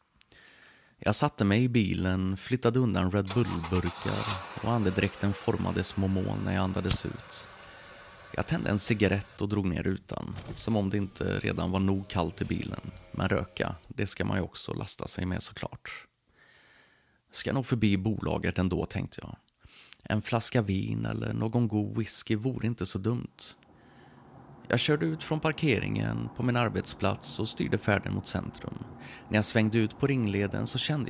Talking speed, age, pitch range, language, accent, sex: 170 wpm, 30-49, 95-120 Hz, Swedish, native, male